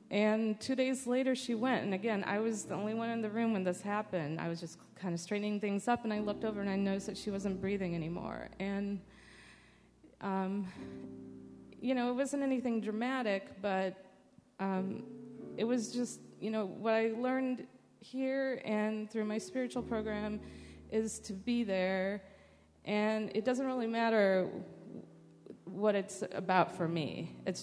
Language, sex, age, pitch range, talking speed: English, female, 30-49, 195-230 Hz, 170 wpm